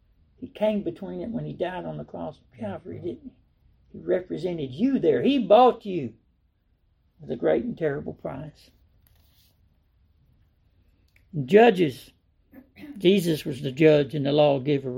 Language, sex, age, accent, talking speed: English, male, 60-79, American, 150 wpm